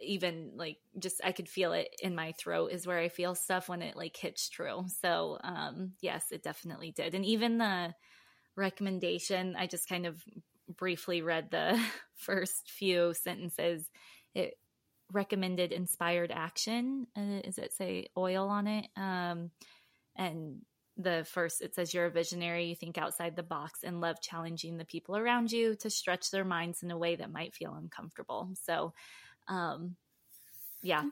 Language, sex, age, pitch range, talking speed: English, female, 20-39, 170-205 Hz, 170 wpm